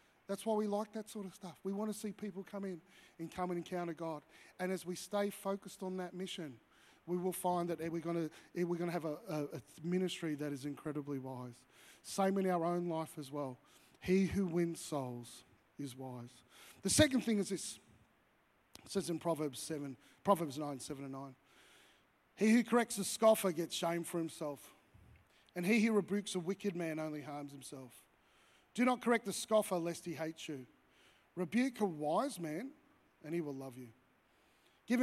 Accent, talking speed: Australian, 190 wpm